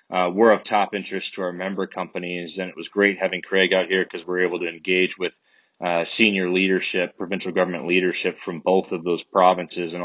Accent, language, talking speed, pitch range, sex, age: American, English, 210 wpm, 90-100 Hz, male, 20-39